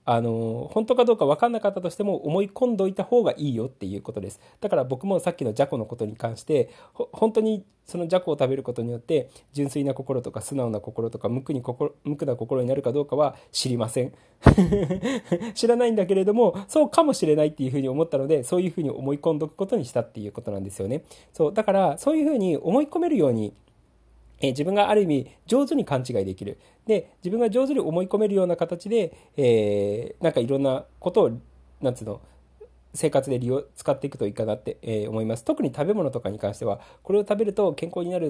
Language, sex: Japanese, male